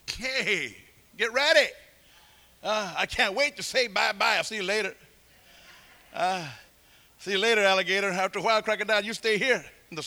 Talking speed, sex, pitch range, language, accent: 165 wpm, male, 195-270 Hz, English, American